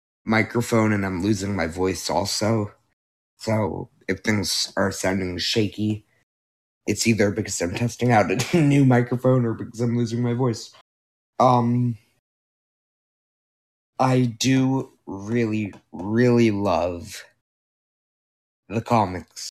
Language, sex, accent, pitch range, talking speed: English, male, American, 95-120 Hz, 110 wpm